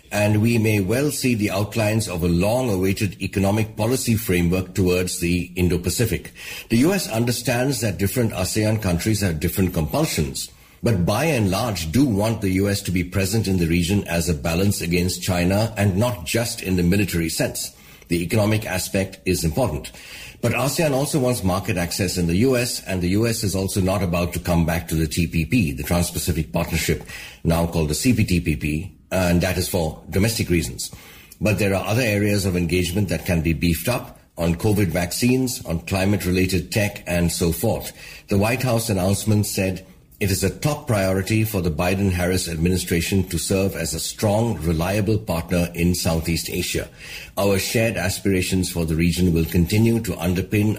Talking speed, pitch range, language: 175 wpm, 85-110 Hz, English